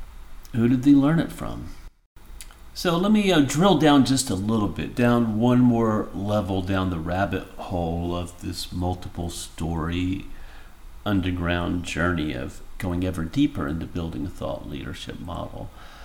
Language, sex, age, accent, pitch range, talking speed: English, male, 50-69, American, 85-115 Hz, 150 wpm